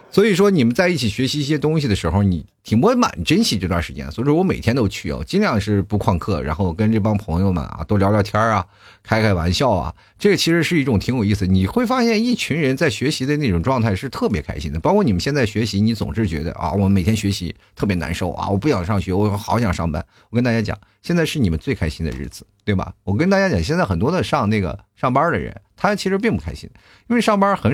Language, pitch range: Chinese, 100-155 Hz